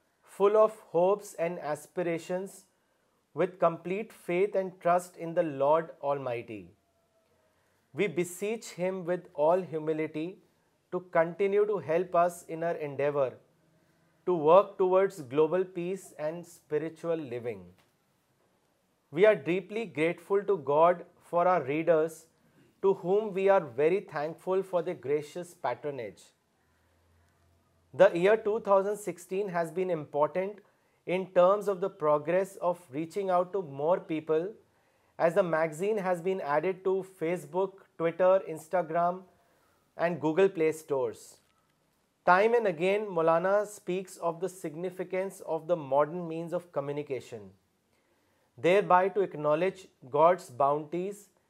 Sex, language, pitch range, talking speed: male, Urdu, 160-190 Hz, 120 wpm